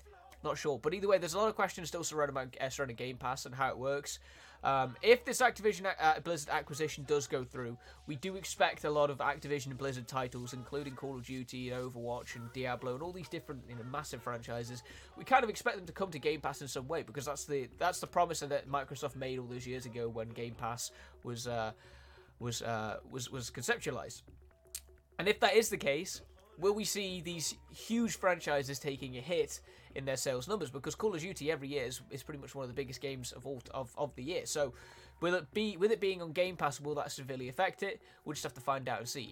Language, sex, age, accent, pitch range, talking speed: Italian, male, 20-39, British, 125-175 Hz, 230 wpm